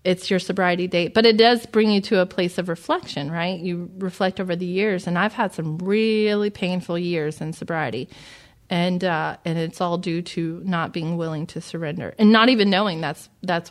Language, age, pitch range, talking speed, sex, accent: English, 30-49, 160-185 Hz, 205 wpm, female, American